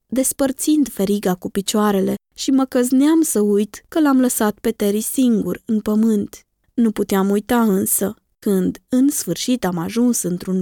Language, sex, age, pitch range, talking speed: Romanian, female, 20-39, 200-265 Hz, 155 wpm